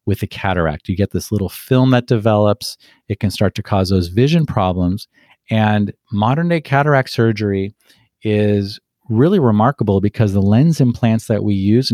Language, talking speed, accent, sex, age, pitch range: English, 160 wpm, American, male, 40-59, 100-125 Hz